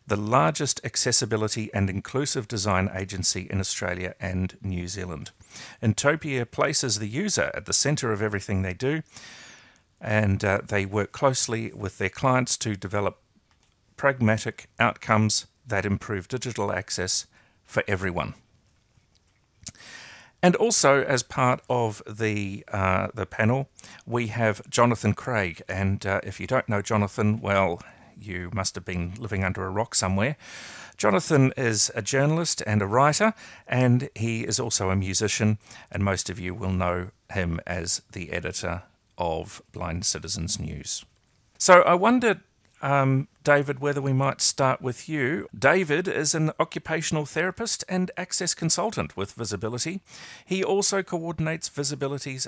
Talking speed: 140 wpm